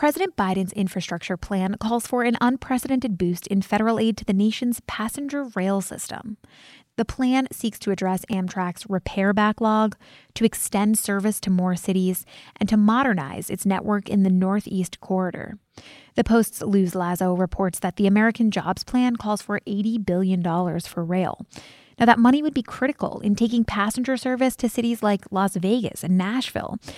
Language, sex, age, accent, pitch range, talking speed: English, female, 20-39, American, 185-230 Hz, 160 wpm